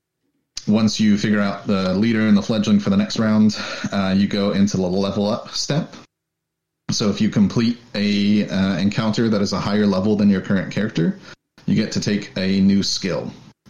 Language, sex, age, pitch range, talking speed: English, male, 30-49, 90-110 Hz, 195 wpm